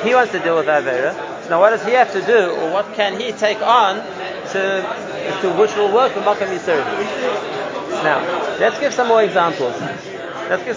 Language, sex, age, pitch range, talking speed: English, male, 30-49, 180-220 Hz, 195 wpm